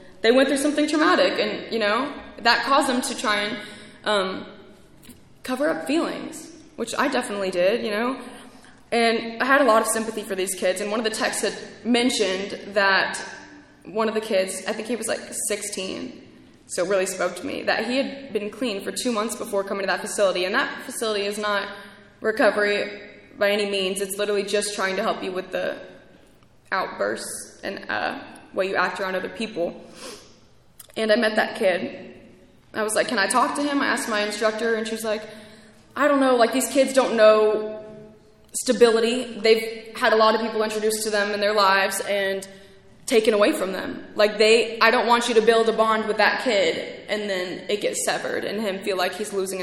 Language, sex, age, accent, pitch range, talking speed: English, female, 10-29, American, 200-240 Hz, 205 wpm